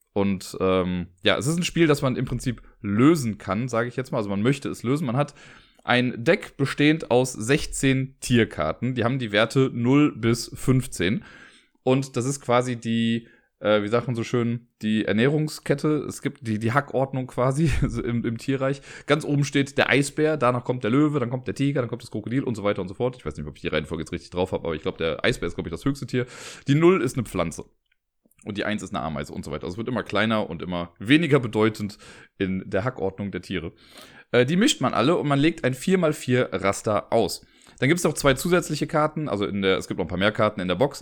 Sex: male